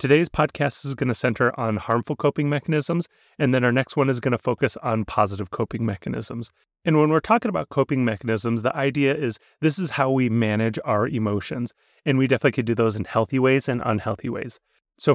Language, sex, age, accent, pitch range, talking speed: English, male, 30-49, American, 110-140 Hz, 210 wpm